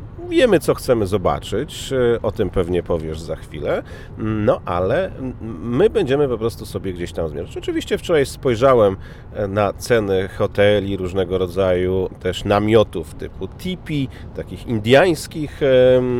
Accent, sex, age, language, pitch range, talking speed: native, male, 40-59, Polish, 95-125 Hz, 125 wpm